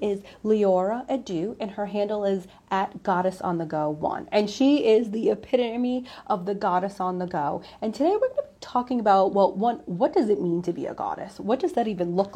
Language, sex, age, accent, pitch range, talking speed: English, female, 30-49, American, 190-240 Hz, 225 wpm